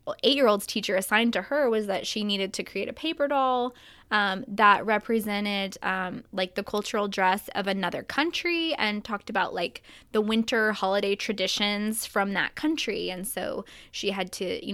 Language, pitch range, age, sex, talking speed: English, 200-255 Hz, 20-39, female, 170 wpm